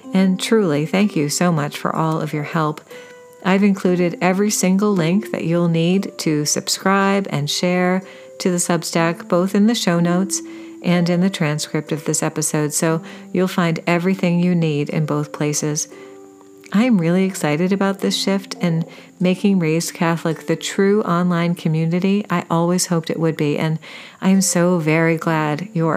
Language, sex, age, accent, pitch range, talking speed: English, female, 40-59, American, 155-195 Hz, 170 wpm